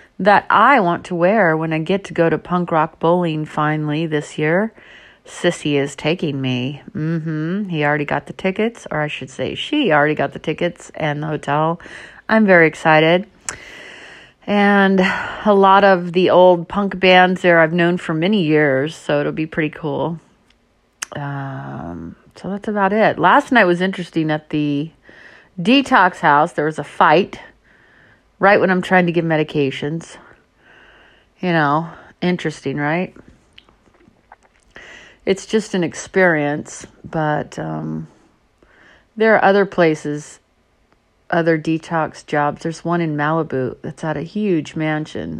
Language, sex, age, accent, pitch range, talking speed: English, female, 40-59, American, 150-185 Hz, 145 wpm